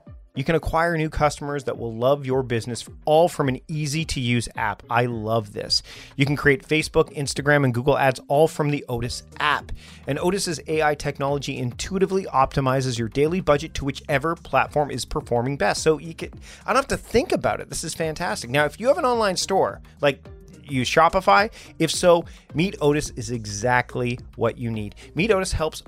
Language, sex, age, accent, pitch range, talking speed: English, male, 30-49, American, 125-160 Hz, 190 wpm